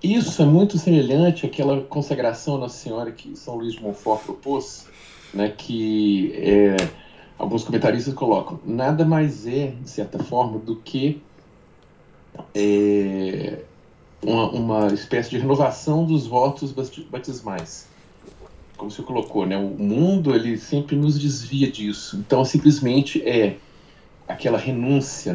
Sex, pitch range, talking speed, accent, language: male, 105-145 Hz, 130 wpm, Brazilian, Portuguese